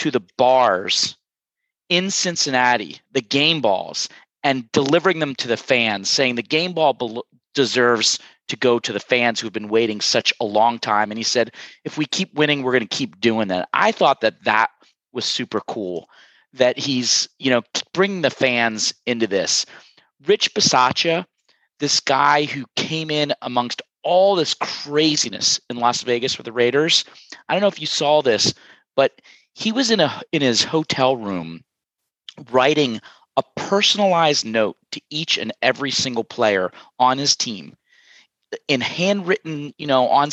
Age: 30-49